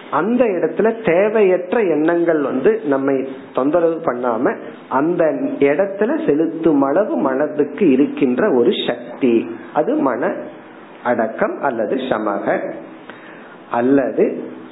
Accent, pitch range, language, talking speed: native, 140-195 Hz, Tamil, 80 wpm